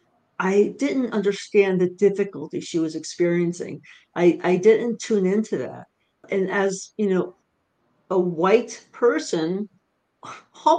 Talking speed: 120 wpm